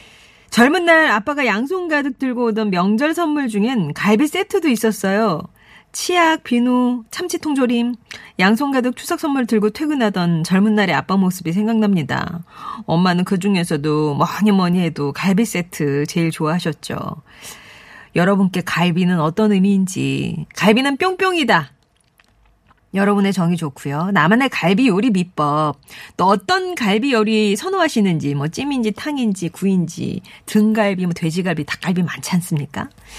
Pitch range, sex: 175-255 Hz, female